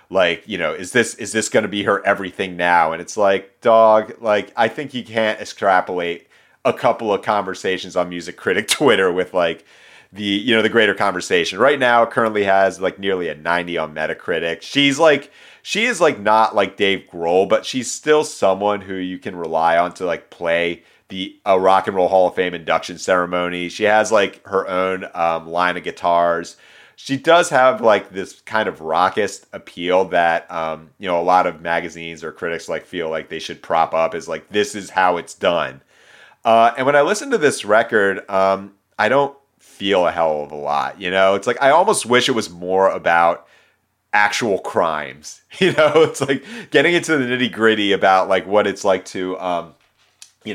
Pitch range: 90-115 Hz